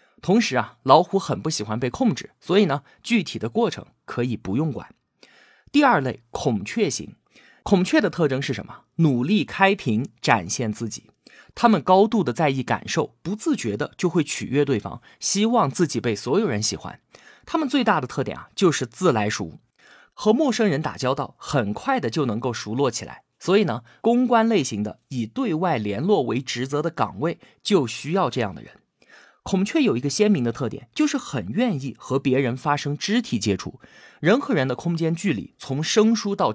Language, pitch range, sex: Chinese, 125-200 Hz, male